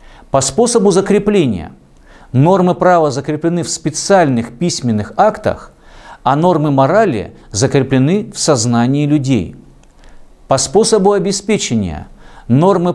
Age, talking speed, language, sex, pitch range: 50-69, 95 wpm, Russian, male, 125-180 Hz